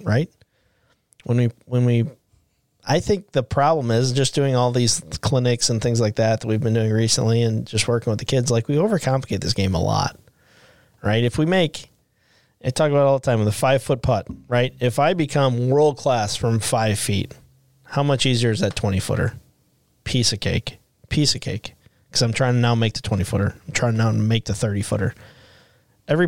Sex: male